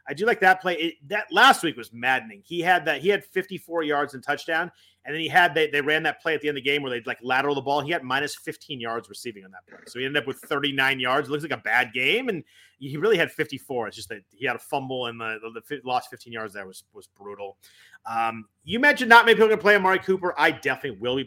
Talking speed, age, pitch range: 285 wpm, 30-49, 120-160 Hz